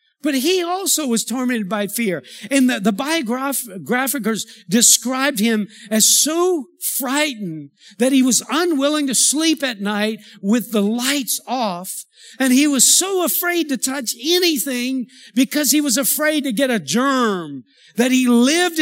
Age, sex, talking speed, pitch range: 50-69, male, 150 wpm, 220-280 Hz